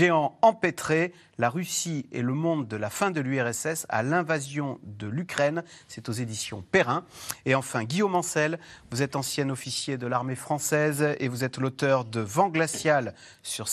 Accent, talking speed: French, 170 wpm